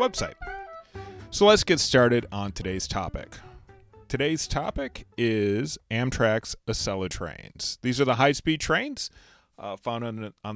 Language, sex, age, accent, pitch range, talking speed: English, male, 30-49, American, 90-140 Hz, 125 wpm